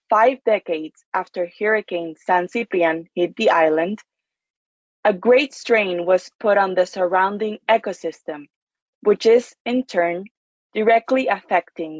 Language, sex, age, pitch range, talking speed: English, female, 20-39, 180-230 Hz, 120 wpm